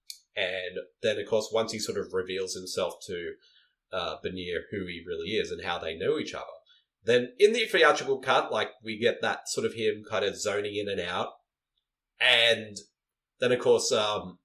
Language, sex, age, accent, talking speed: English, male, 30-49, Australian, 190 wpm